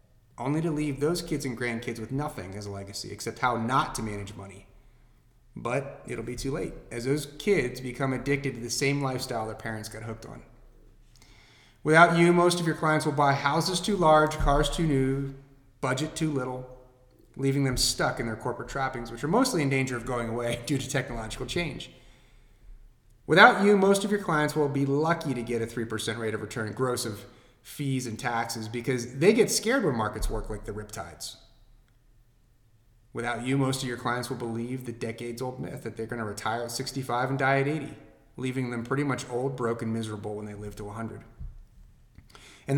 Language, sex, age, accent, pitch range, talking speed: English, male, 30-49, American, 115-145 Hz, 195 wpm